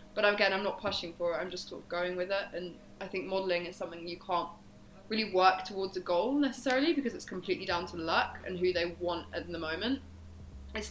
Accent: British